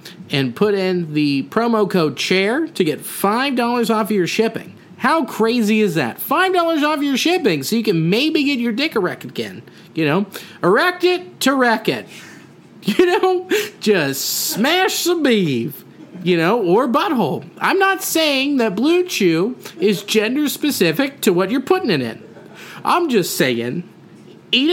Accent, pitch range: American, 190-310 Hz